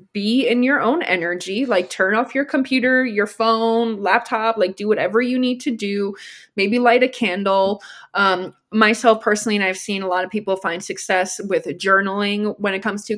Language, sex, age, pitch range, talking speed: English, female, 20-39, 185-245 Hz, 190 wpm